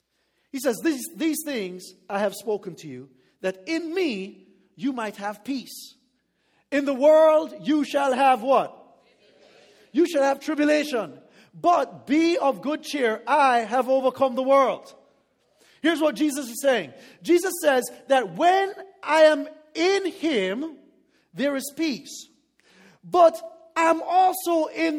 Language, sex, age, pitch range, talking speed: English, male, 40-59, 240-315 Hz, 140 wpm